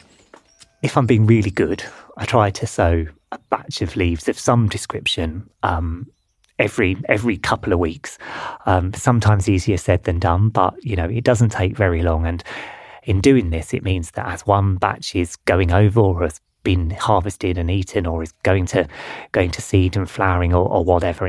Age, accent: 30-49, British